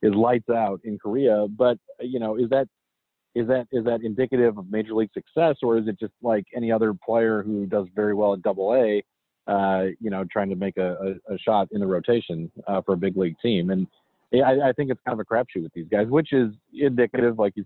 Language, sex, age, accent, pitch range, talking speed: English, male, 40-59, American, 95-120 Hz, 230 wpm